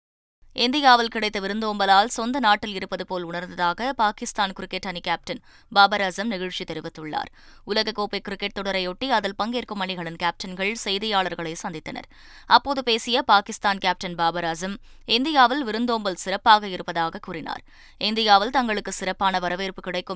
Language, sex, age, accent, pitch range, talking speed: Tamil, female, 20-39, native, 185-230 Hz, 115 wpm